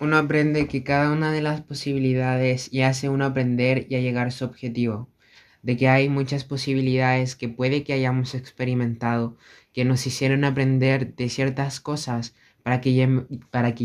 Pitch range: 120-140 Hz